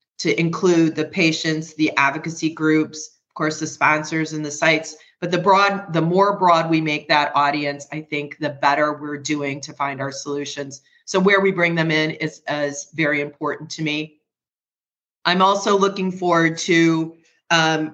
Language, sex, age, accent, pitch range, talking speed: English, female, 30-49, American, 150-165 Hz, 175 wpm